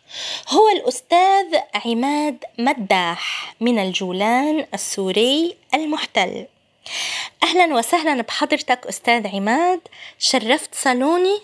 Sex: female